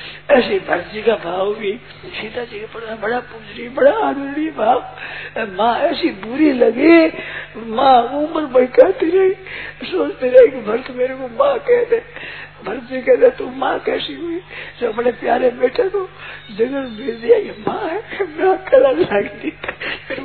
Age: 50-69